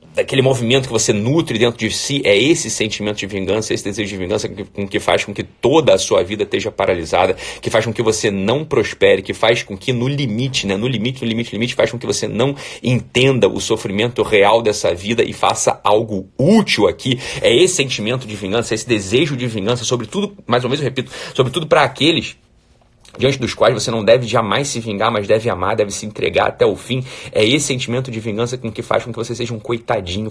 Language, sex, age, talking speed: Portuguese, male, 30-49, 230 wpm